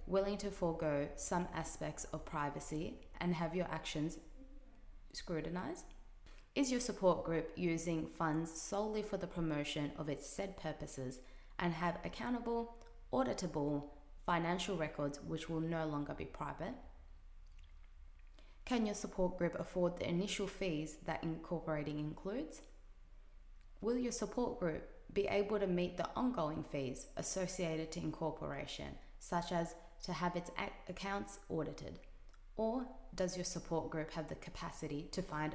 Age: 20-39